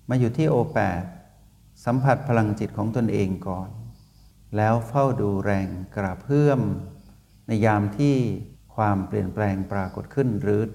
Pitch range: 100-120 Hz